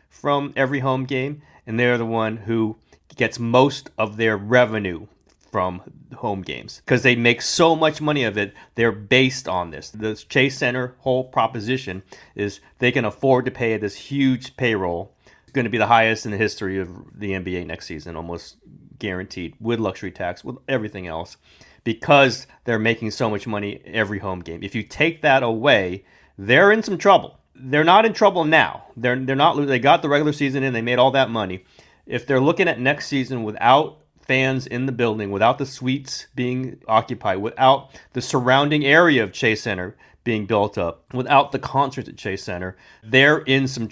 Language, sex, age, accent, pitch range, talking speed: English, male, 30-49, American, 105-135 Hz, 185 wpm